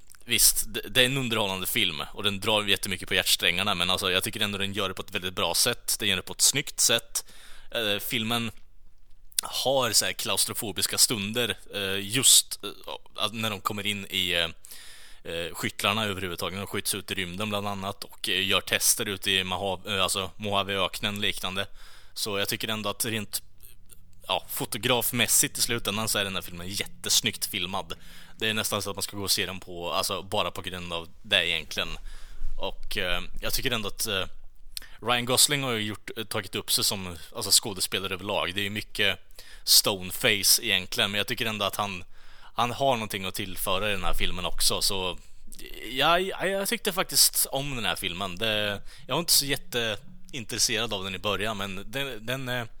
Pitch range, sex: 95-115 Hz, male